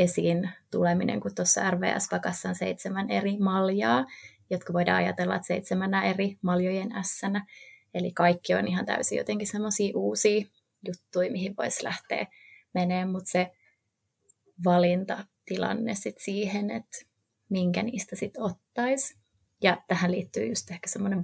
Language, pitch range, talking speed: Finnish, 175-205 Hz, 130 wpm